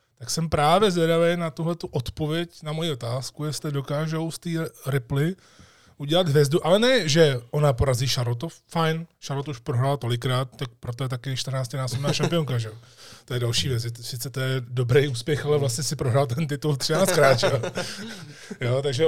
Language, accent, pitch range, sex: Czech, native, 130-160 Hz, male